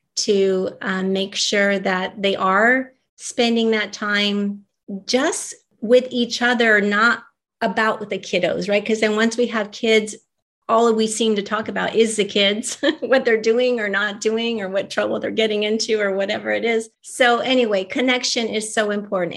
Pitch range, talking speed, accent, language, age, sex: 190-225 Hz, 175 wpm, American, English, 30-49, female